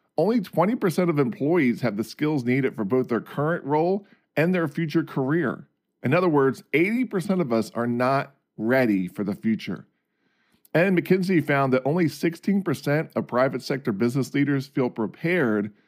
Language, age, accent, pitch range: English, 40-59, American, 115-165 Hz